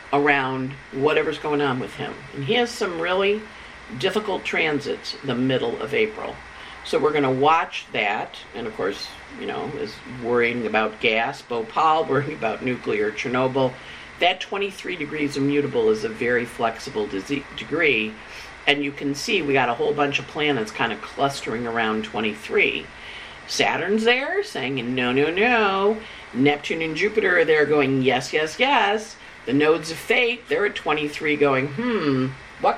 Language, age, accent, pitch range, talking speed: English, 50-69, American, 130-200 Hz, 155 wpm